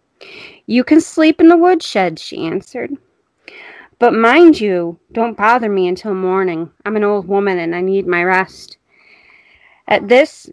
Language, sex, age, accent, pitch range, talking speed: English, female, 30-49, American, 185-235 Hz, 155 wpm